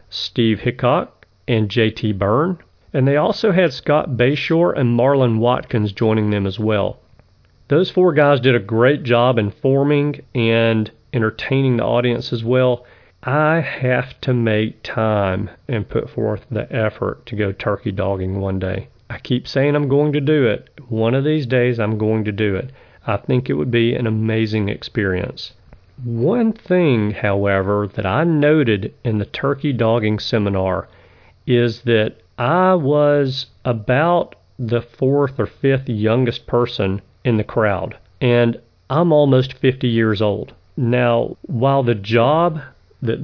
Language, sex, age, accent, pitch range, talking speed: English, male, 40-59, American, 110-130 Hz, 150 wpm